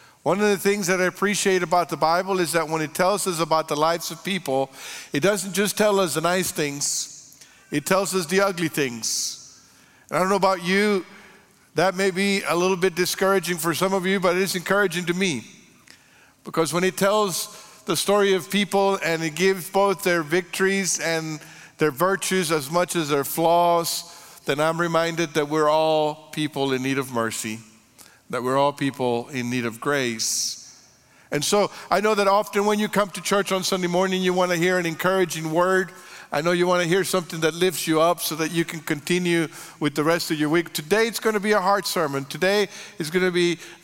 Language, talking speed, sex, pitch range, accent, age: English, 210 wpm, male, 150-195 Hz, American, 50-69